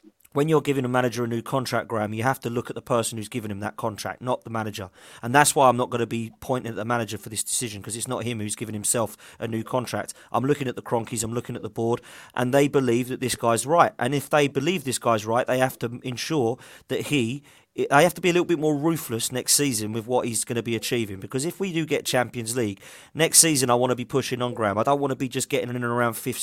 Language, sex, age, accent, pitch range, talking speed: English, male, 30-49, British, 115-140 Hz, 280 wpm